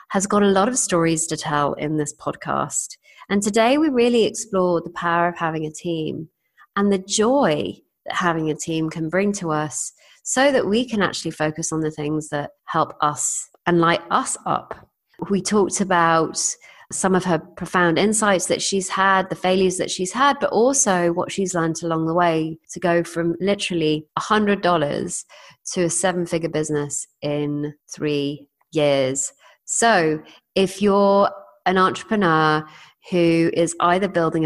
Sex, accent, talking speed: female, British, 165 wpm